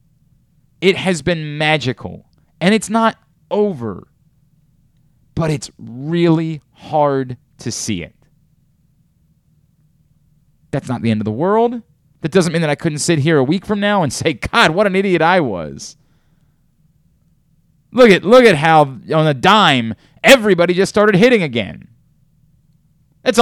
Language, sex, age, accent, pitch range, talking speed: English, male, 30-49, American, 145-195 Hz, 145 wpm